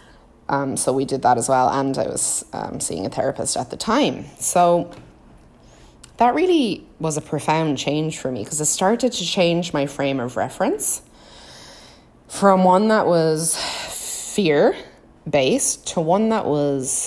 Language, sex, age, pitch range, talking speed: English, female, 20-39, 130-175 Hz, 155 wpm